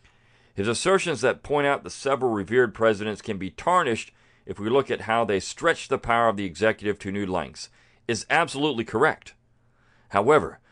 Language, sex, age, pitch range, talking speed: English, male, 50-69, 115-150 Hz, 175 wpm